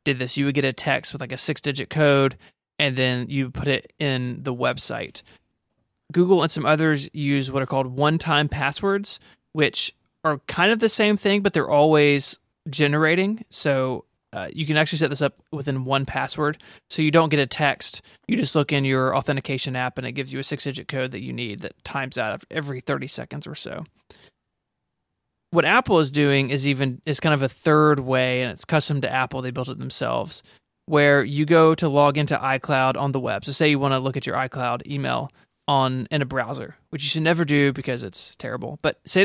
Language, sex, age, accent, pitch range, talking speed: English, male, 30-49, American, 135-155 Hz, 215 wpm